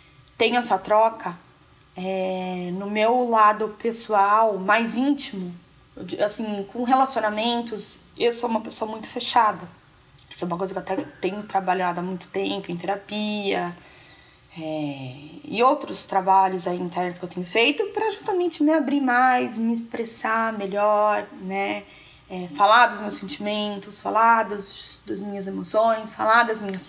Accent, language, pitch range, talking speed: Brazilian, Portuguese, 190-230 Hz, 150 wpm